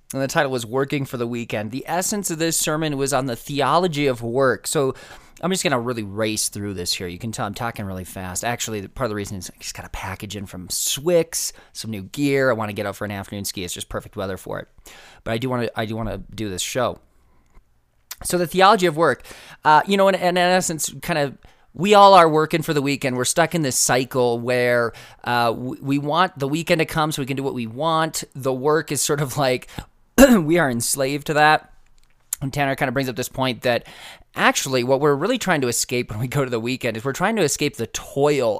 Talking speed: 250 wpm